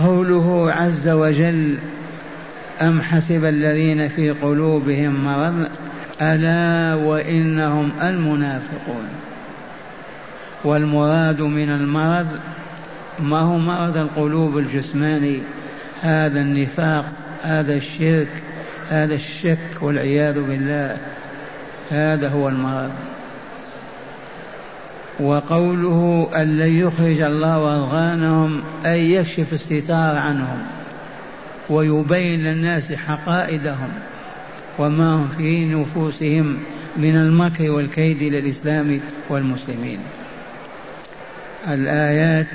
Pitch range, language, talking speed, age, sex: 150-165 Hz, Arabic, 75 wpm, 60-79, male